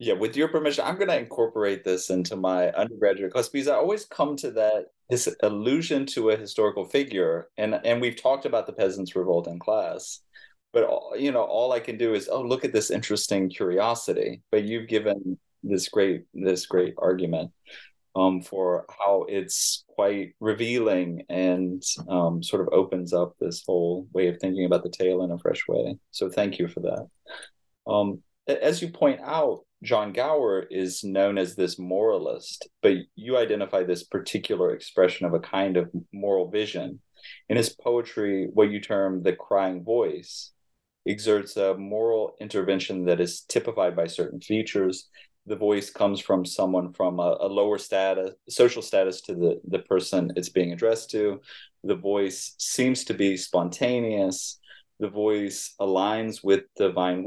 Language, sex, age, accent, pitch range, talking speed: English, male, 30-49, American, 90-110 Hz, 170 wpm